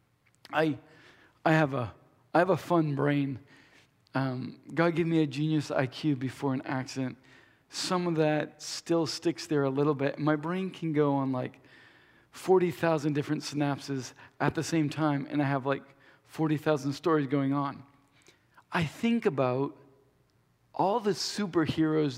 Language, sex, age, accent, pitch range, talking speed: English, male, 40-59, American, 135-165 Hz, 150 wpm